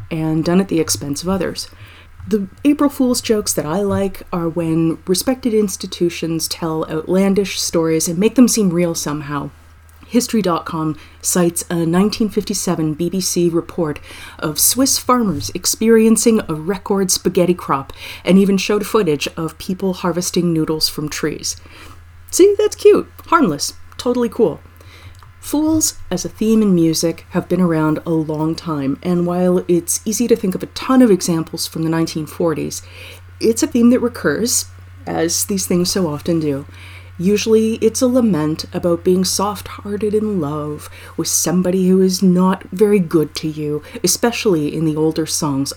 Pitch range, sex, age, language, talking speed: 155-200 Hz, female, 30-49, English, 155 wpm